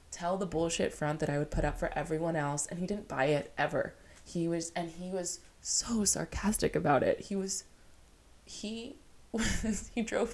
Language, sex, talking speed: English, female, 190 wpm